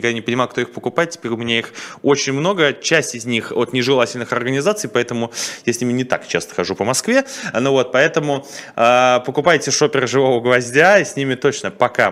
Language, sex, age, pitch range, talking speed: Russian, male, 20-39, 110-150 Hz, 205 wpm